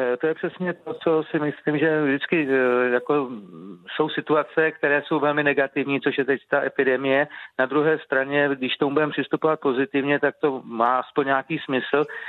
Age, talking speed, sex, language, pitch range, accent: 40-59, 165 wpm, male, Czech, 135-150 Hz, native